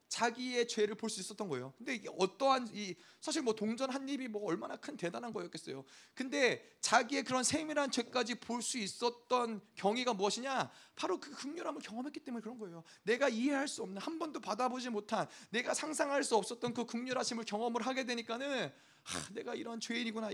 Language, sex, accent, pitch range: Korean, male, native, 200-260 Hz